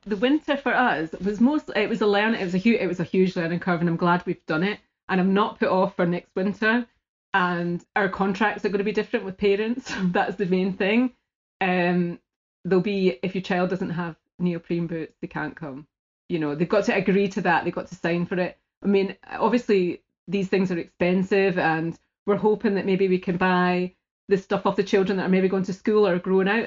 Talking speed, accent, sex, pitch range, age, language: 235 wpm, British, female, 180-205 Hz, 30-49, English